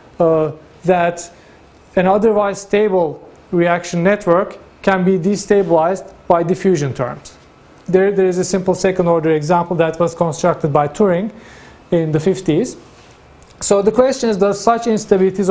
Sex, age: male, 40-59